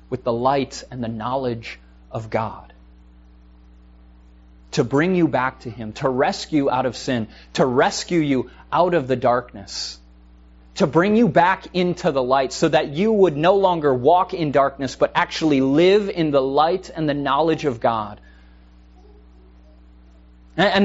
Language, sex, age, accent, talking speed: English, male, 20-39, American, 155 wpm